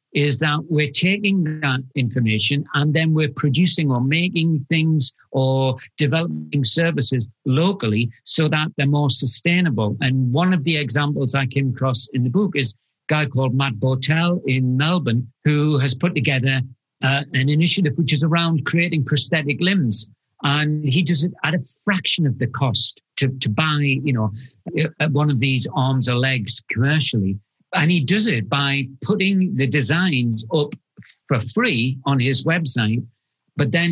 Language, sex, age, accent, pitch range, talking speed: English, male, 50-69, British, 130-160 Hz, 165 wpm